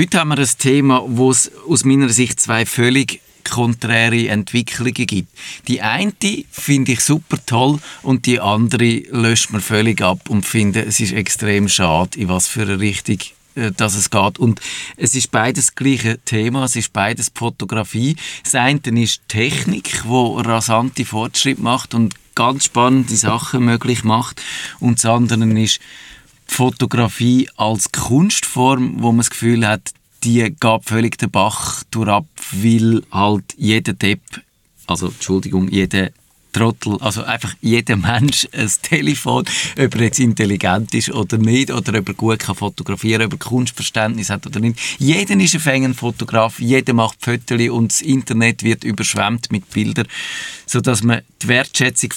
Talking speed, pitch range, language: 155 wpm, 110-130 Hz, German